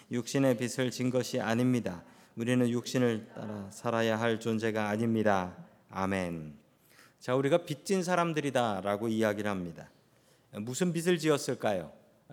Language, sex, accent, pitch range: Korean, male, native, 120-175 Hz